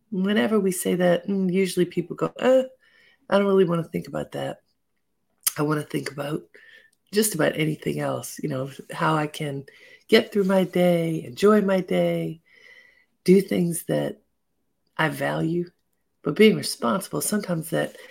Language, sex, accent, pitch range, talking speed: English, female, American, 145-205 Hz, 155 wpm